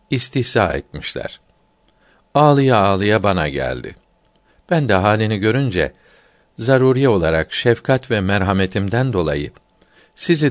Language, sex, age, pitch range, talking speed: Turkish, male, 60-79, 95-130 Hz, 95 wpm